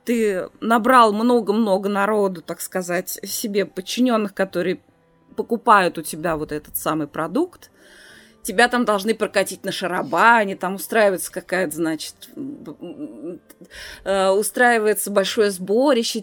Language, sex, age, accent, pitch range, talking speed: Russian, female, 20-39, native, 195-240 Hz, 105 wpm